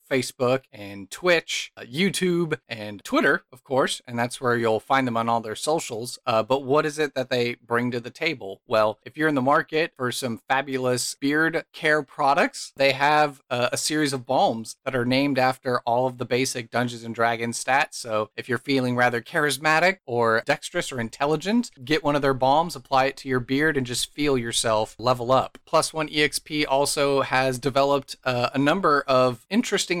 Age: 30-49